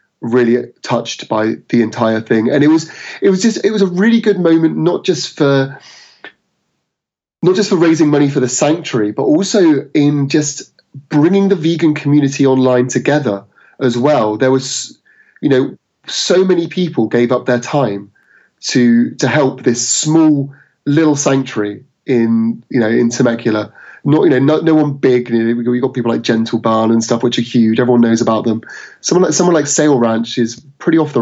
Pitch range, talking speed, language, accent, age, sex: 115-150 Hz, 185 wpm, English, British, 30-49, male